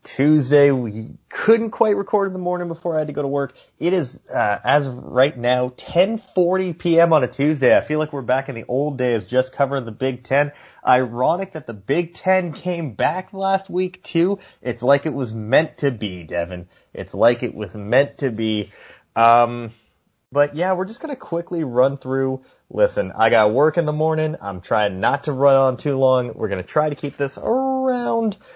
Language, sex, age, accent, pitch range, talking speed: English, male, 30-49, American, 125-170 Hz, 210 wpm